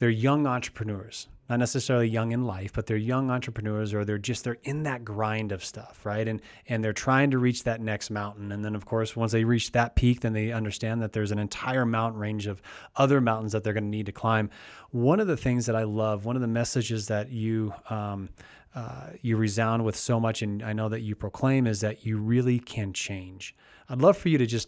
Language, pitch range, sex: English, 105-120 Hz, male